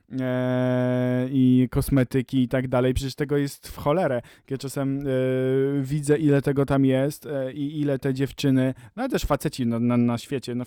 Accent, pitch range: native, 125-140 Hz